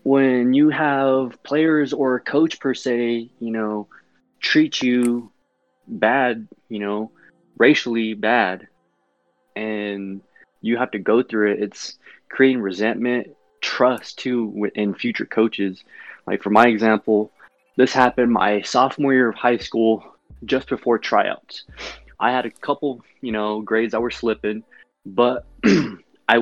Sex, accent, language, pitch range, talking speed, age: male, American, English, 105-125 Hz, 135 wpm, 20-39